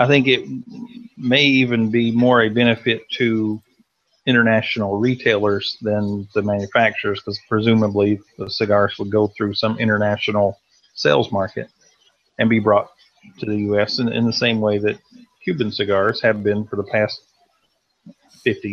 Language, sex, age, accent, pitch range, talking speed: English, male, 40-59, American, 110-140 Hz, 145 wpm